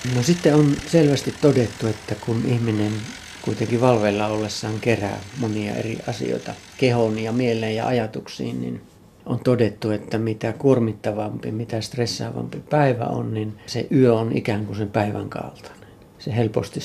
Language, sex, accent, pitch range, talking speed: Finnish, male, native, 105-120 Hz, 145 wpm